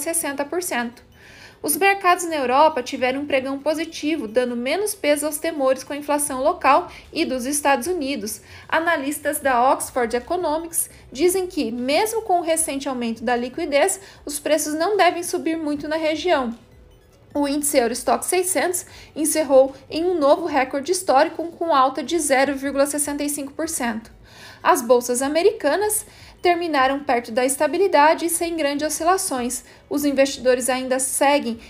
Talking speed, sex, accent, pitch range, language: 135 wpm, female, Brazilian, 265-340 Hz, Portuguese